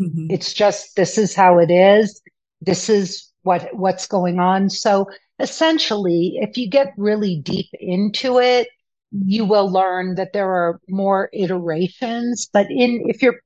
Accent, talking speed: American, 150 wpm